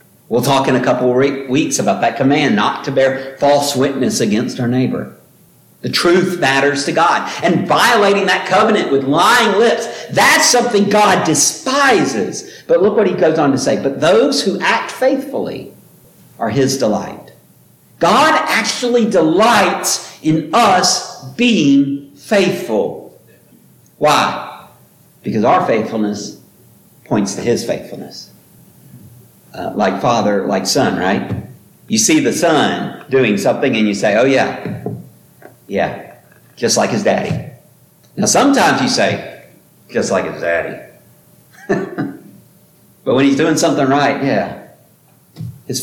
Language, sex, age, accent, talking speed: English, male, 50-69, American, 135 wpm